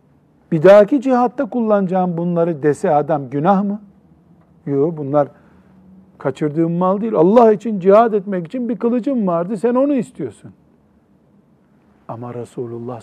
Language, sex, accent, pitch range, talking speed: Turkish, male, native, 145-215 Hz, 120 wpm